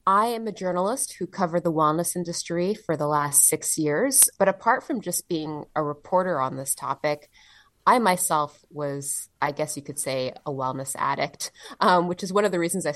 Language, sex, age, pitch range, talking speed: English, female, 20-39, 150-190 Hz, 200 wpm